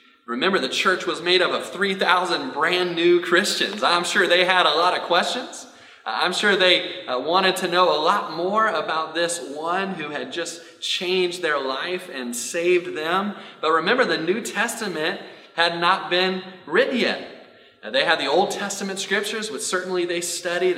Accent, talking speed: American, 175 wpm